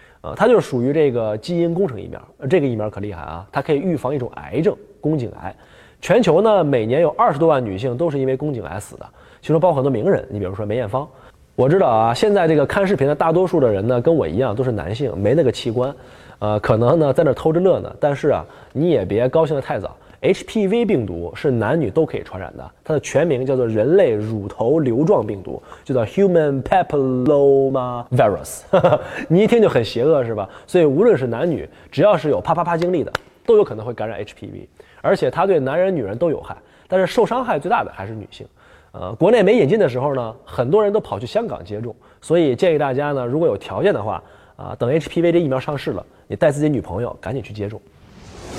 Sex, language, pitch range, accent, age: male, Chinese, 110-165 Hz, native, 20-39